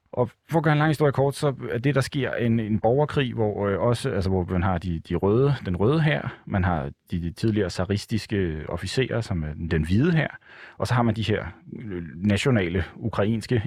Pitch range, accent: 90-115 Hz, native